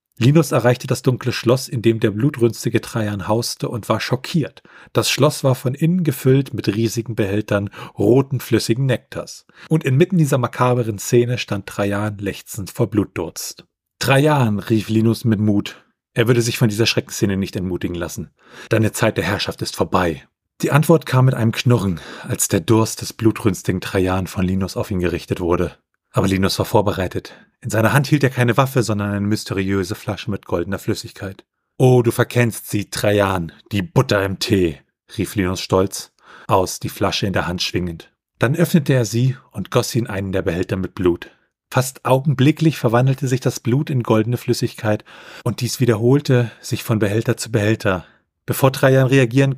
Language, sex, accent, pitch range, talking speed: German, male, German, 105-130 Hz, 175 wpm